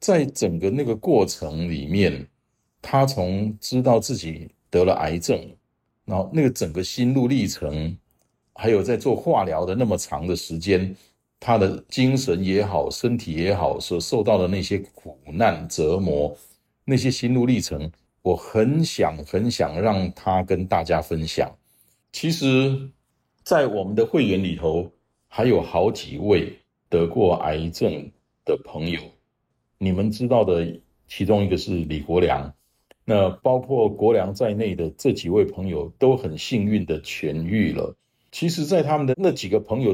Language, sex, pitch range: Chinese, male, 85-125 Hz